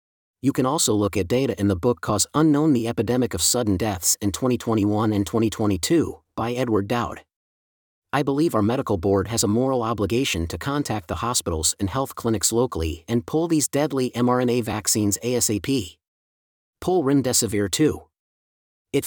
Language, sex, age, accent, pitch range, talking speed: English, male, 40-59, American, 100-130 Hz, 160 wpm